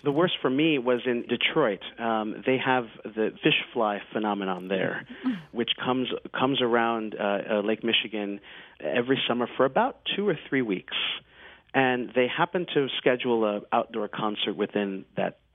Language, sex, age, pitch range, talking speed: English, male, 40-59, 100-120 Hz, 160 wpm